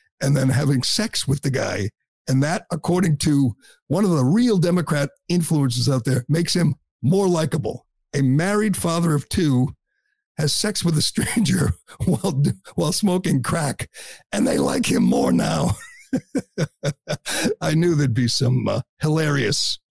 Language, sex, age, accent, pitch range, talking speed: English, male, 50-69, American, 140-180 Hz, 150 wpm